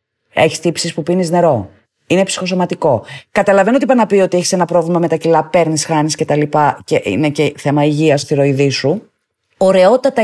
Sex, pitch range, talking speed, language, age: female, 150-215 Hz, 180 wpm, Greek, 30-49